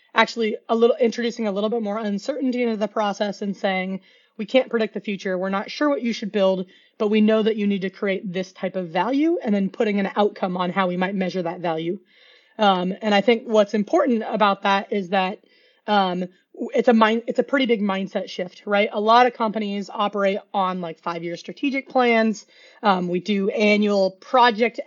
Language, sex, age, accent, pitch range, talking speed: English, female, 30-49, American, 190-225 Hz, 205 wpm